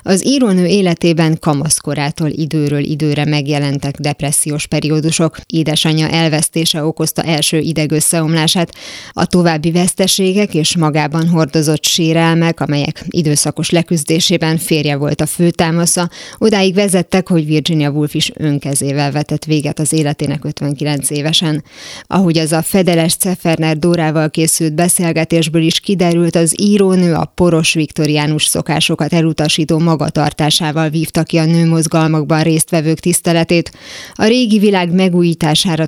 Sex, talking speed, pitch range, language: female, 115 wpm, 150-175 Hz, Hungarian